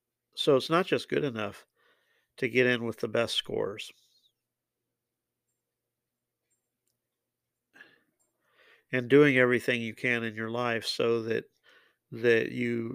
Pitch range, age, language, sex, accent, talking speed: 115-125 Hz, 50-69, English, male, American, 115 wpm